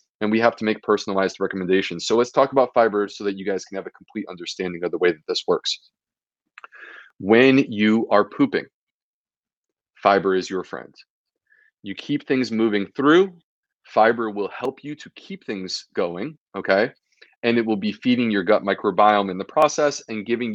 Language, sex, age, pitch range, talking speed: English, male, 30-49, 100-145 Hz, 180 wpm